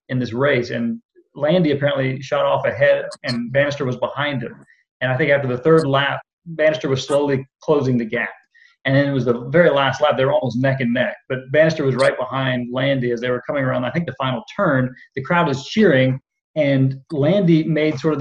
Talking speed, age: 220 wpm, 30-49